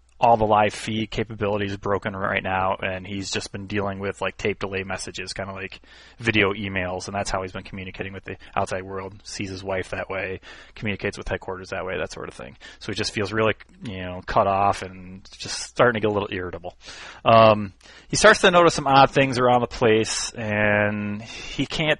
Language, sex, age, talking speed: English, male, 30-49, 215 wpm